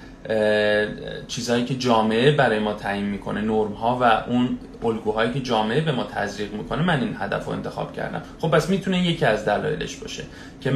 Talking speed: 185 wpm